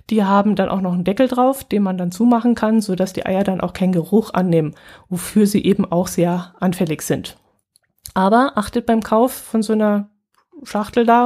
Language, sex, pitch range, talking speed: German, female, 185-220 Hz, 195 wpm